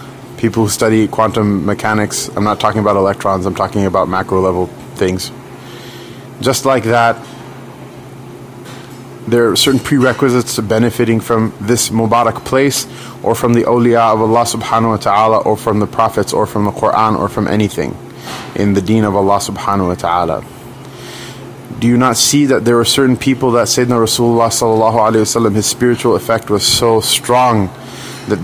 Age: 30-49